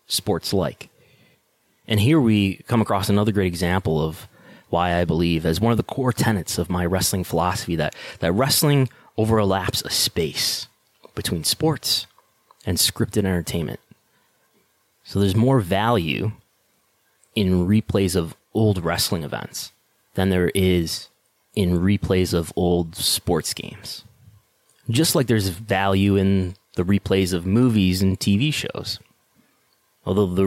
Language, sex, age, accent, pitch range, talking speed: English, male, 20-39, American, 90-110 Hz, 135 wpm